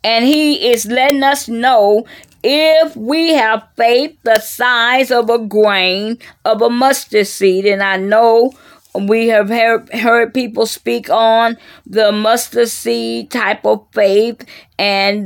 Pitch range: 210-285 Hz